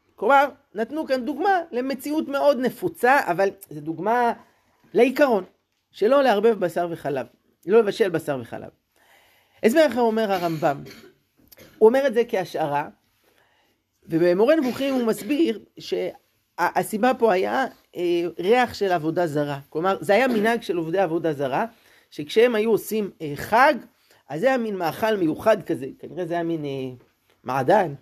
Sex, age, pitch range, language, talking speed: male, 30-49, 170-265 Hz, Hebrew, 145 wpm